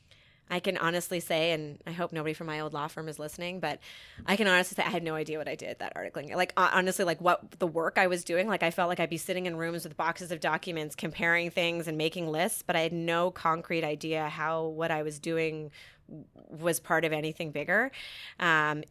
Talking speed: 230 wpm